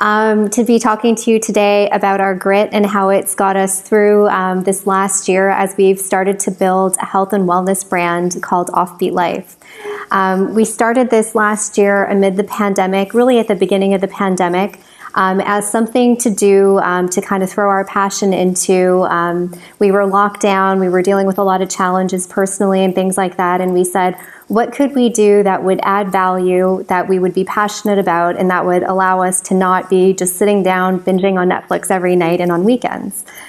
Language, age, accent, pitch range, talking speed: English, 20-39, American, 185-205 Hz, 210 wpm